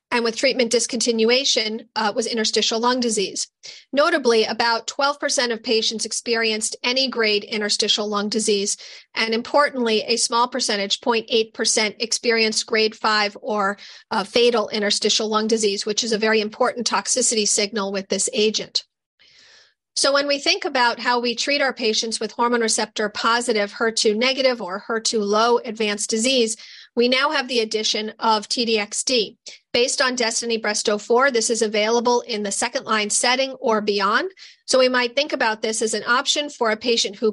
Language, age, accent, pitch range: English, 40-59, American, 215-245 Hz